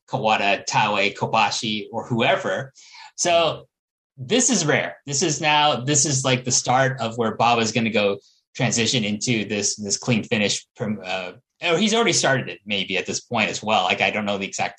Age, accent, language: 30-49, American, English